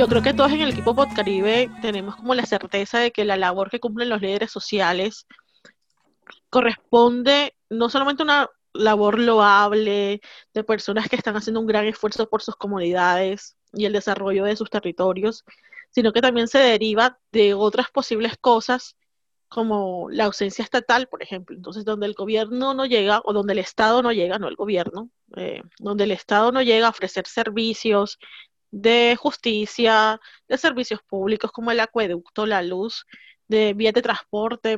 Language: Spanish